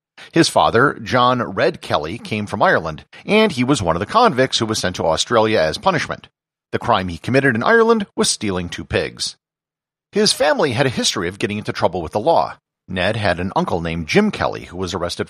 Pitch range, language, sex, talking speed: 90-150 Hz, English, male, 210 wpm